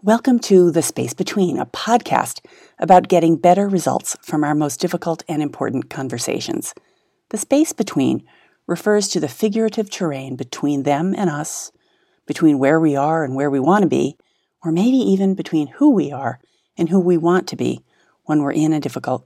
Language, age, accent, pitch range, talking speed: English, 40-59, American, 140-190 Hz, 180 wpm